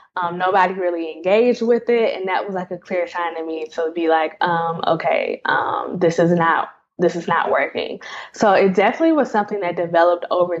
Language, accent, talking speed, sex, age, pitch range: English, American, 210 wpm, female, 10-29, 170-195 Hz